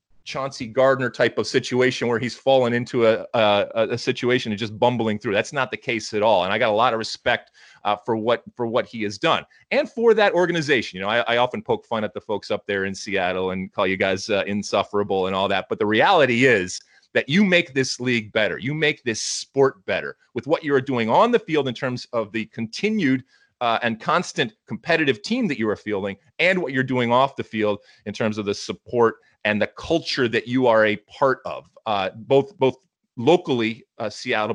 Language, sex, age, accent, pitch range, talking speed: English, male, 30-49, American, 105-135 Hz, 225 wpm